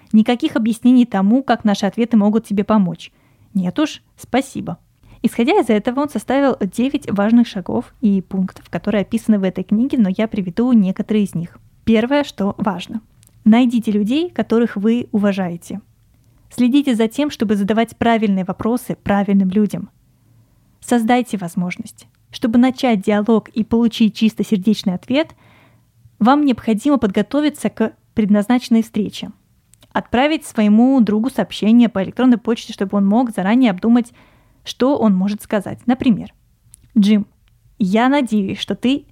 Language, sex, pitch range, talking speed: Russian, female, 200-245 Hz, 135 wpm